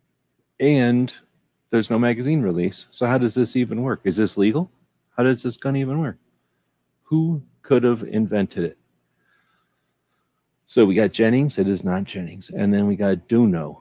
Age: 40-59